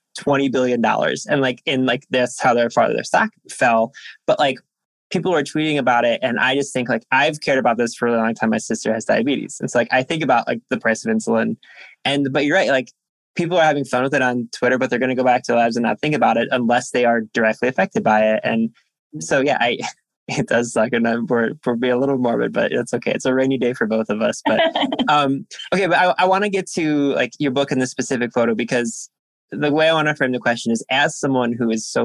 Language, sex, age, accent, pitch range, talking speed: English, male, 20-39, American, 110-130 Hz, 260 wpm